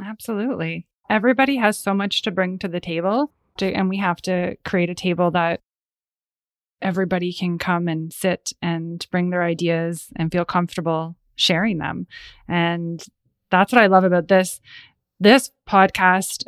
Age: 20-39